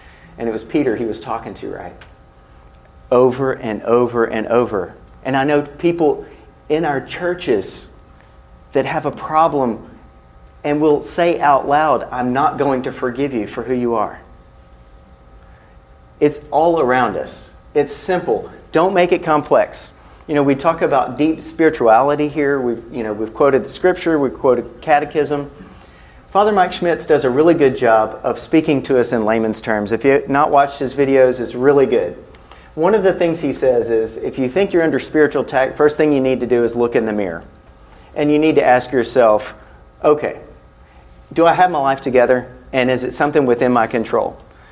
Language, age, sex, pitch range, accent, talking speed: English, 40-59, male, 110-155 Hz, American, 180 wpm